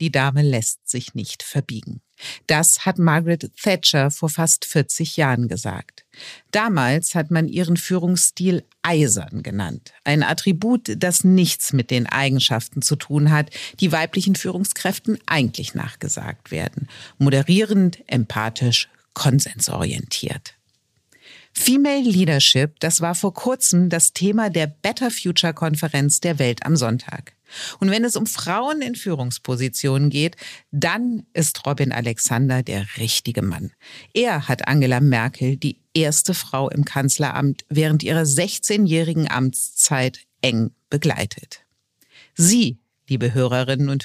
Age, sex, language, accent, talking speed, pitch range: 50-69, female, German, German, 125 wpm, 130-175 Hz